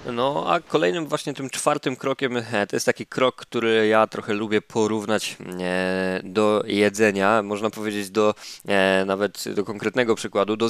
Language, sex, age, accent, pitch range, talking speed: Polish, male, 20-39, native, 100-125 Hz, 145 wpm